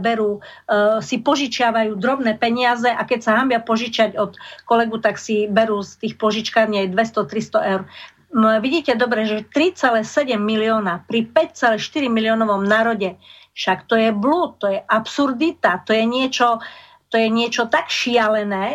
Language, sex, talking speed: Slovak, female, 145 wpm